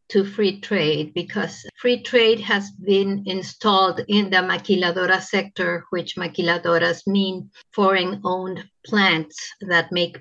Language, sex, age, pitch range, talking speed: English, female, 50-69, 180-225 Hz, 120 wpm